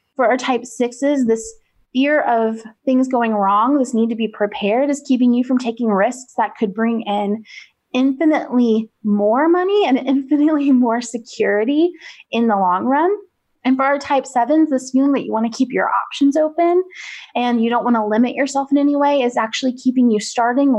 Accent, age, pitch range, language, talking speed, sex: American, 20-39, 220-270 Hz, English, 190 wpm, female